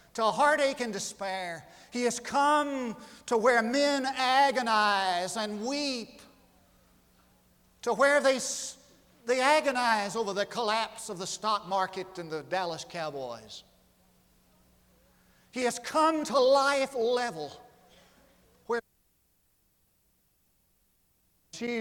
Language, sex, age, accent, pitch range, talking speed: English, male, 50-69, American, 175-235 Hz, 100 wpm